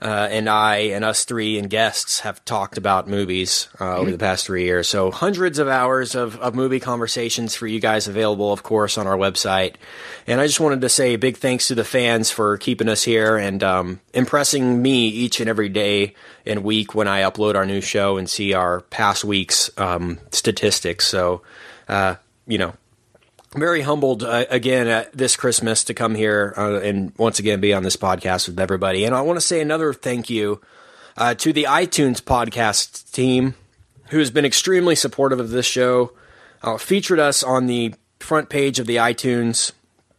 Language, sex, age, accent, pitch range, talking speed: English, male, 20-39, American, 105-130 Hz, 195 wpm